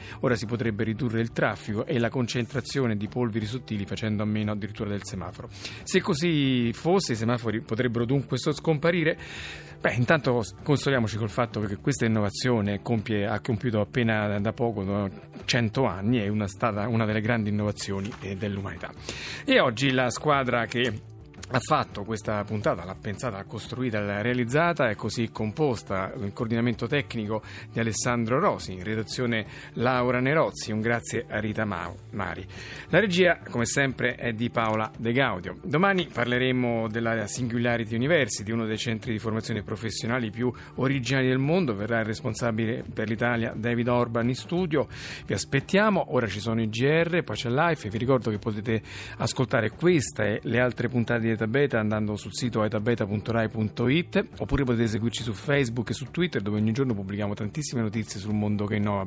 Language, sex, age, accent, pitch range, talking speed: Italian, male, 30-49, native, 105-125 Hz, 165 wpm